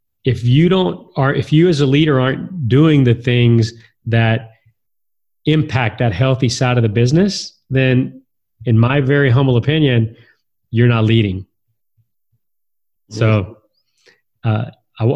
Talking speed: 125 wpm